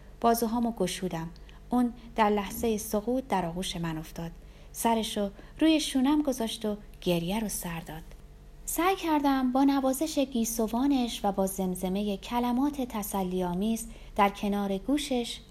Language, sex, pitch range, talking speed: Persian, female, 180-260 Hz, 125 wpm